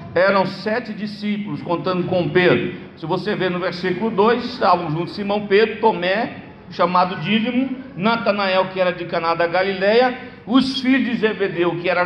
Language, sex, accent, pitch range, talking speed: Portuguese, male, Brazilian, 180-240 Hz, 165 wpm